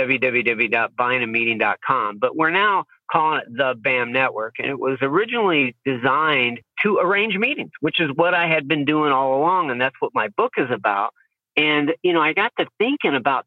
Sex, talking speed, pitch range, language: male, 185 wpm, 120-165 Hz, English